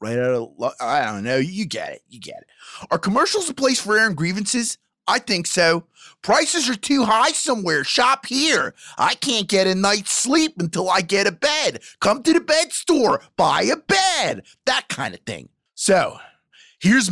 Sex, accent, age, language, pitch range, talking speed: male, American, 30-49, English, 185-270 Hz, 190 wpm